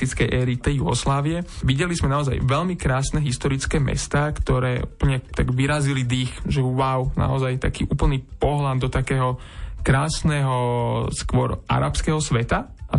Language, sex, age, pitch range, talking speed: Slovak, male, 20-39, 125-145 Hz, 130 wpm